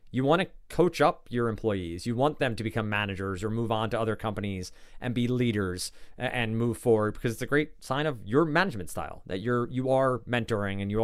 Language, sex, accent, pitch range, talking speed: English, male, American, 110-140 Hz, 230 wpm